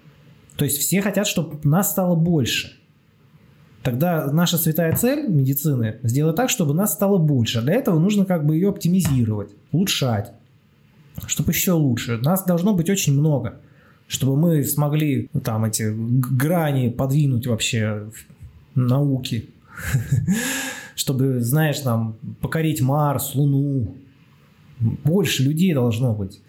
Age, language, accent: 20-39, Russian, native